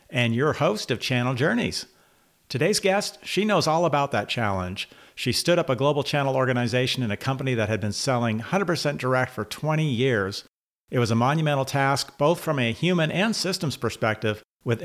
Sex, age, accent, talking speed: male, 50-69, American, 185 wpm